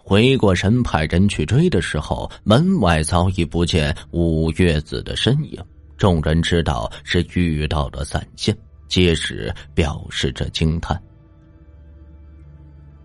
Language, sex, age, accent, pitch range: Chinese, male, 30-49, native, 80-95 Hz